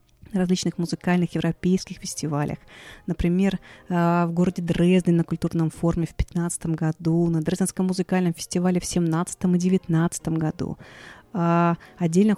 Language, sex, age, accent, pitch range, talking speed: Russian, female, 30-49, native, 165-185 Hz, 115 wpm